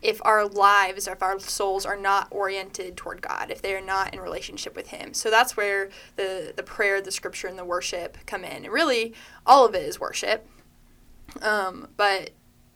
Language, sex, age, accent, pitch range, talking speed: English, female, 10-29, American, 195-240 Hz, 195 wpm